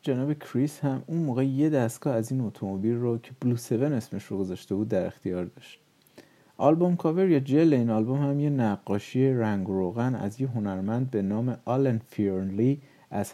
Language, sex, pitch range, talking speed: Persian, male, 110-140 Hz, 180 wpm